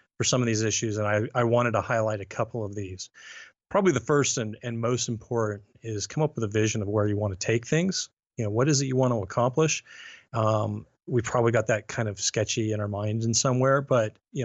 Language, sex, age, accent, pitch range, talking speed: English, male, 30-49, American, 110-125 Hz, 245 wpm